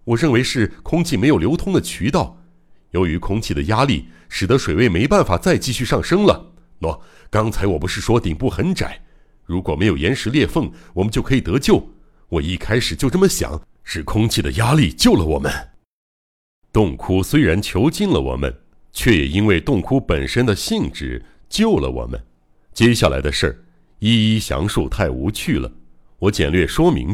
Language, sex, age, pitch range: Chinese, male, 60-79, 80-120 Hz